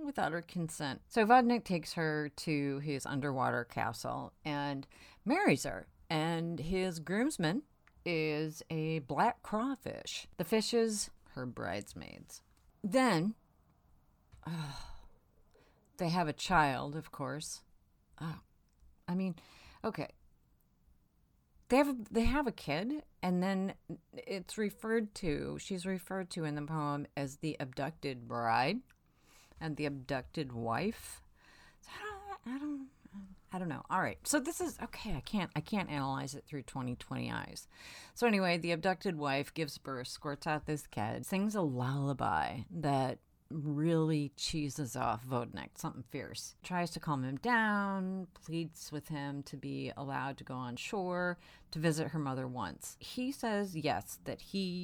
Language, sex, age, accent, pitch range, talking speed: English, female, 40-59, American, 135-190 Hz, 145 wpm